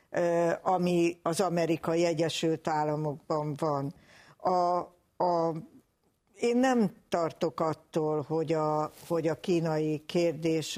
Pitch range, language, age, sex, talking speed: 155-180 Hz, Hungarian, 60-79, female, 100 wpm